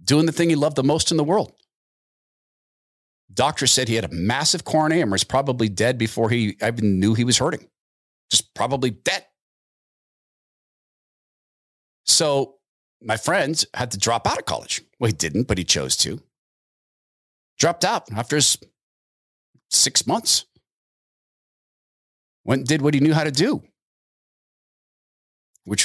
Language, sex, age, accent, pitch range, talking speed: English, male, 40-59, American, 110-150 Hz, 145 wpm